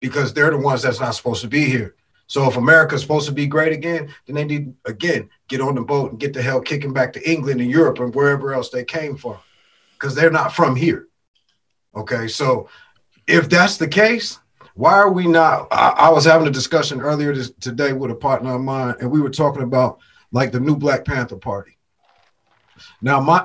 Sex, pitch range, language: male, 130-155 Hz, English